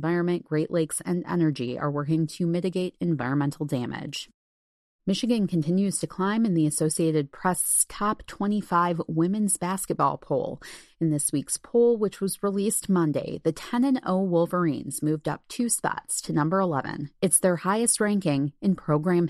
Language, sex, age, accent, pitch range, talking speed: English, female, 30-49, American, 155-200 Hz, 150 wpm